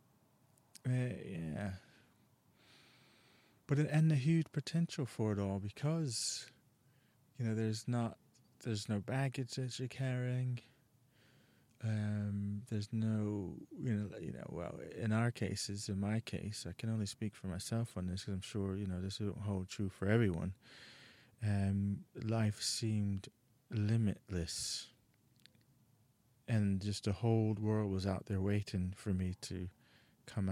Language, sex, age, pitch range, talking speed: English, male, 30-49, 95-120 Hz, 140 wpm